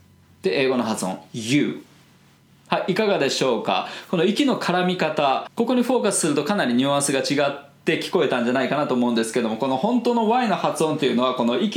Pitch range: 125-205 Hz